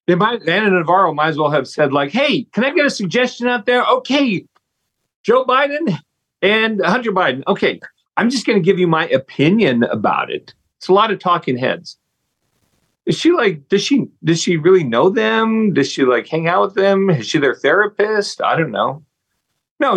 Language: English